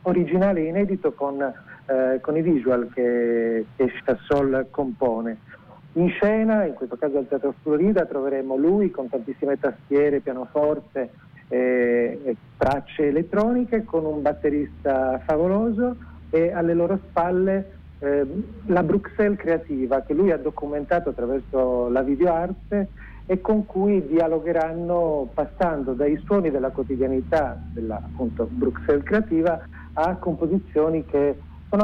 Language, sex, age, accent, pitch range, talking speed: Italian, male, 50-69, native, 135-175 Hz, 125 wpm